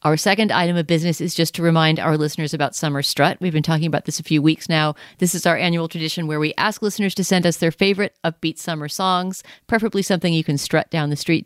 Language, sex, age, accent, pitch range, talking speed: English, female, 40-59, American, 150-185 Hz, 250 wpm